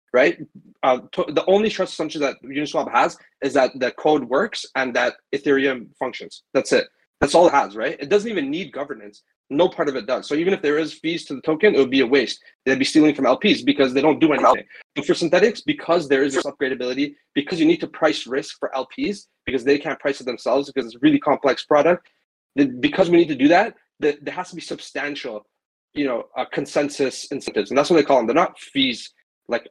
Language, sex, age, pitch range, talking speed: English, male, 20-39, 140-195 Hz, 235 wpm